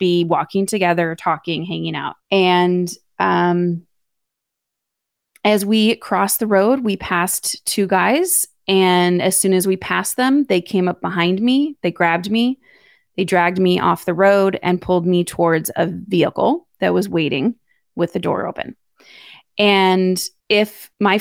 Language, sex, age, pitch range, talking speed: English, female, 20-39, 175-230 Hz, 155 wpm